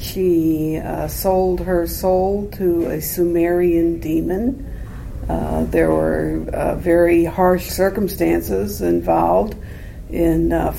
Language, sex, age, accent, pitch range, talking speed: English, female, 60-79, American, 145-200 Hz, 105 wpm